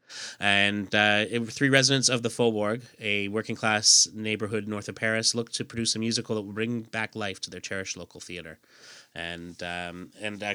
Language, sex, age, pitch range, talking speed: English, male, 30-49, 95-115 Hz, 180 wpm